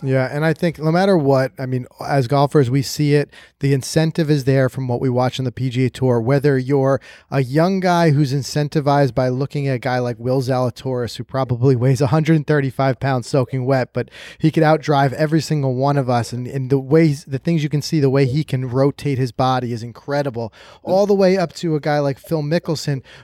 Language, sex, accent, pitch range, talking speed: English, male, American, 130-155 Hz, 215 wpm